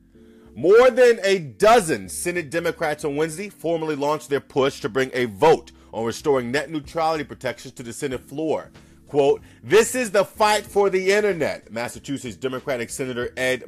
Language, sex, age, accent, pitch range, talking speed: English, male, 40-59, American, 120-165 Hz, 160 wpm